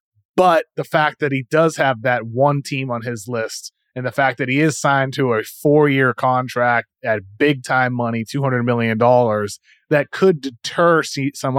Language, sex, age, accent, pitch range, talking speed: English, male, 30-49, American, 125-155 Hz, 180 wpm